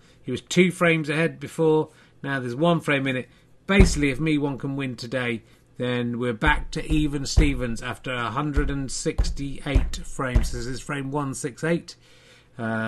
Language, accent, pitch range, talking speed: English, British, 125-165 Hz, 155 wpm